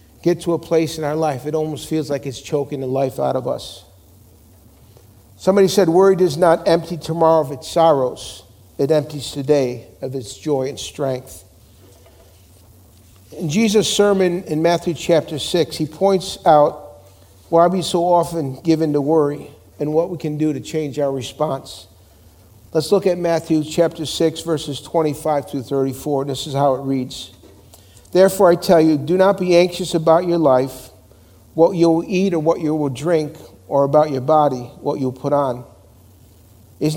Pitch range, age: 125-165 Hz, 50-69